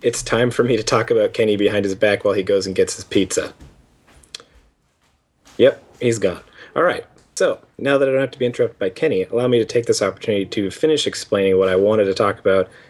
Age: 30-49